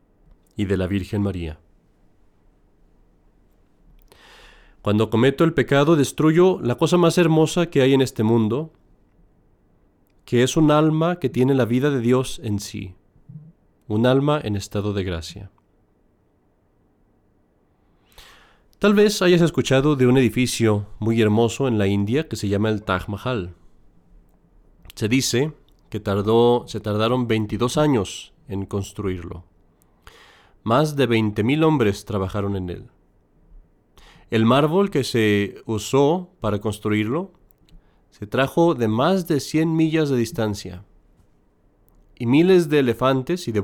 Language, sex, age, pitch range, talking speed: Spanish, male, 40-59, 100-140 Hz, 130 wpm